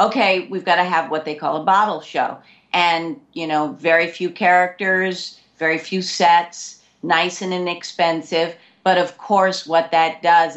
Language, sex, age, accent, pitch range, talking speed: English, female, 50-69, American, 160-200 Hz, 165 wpm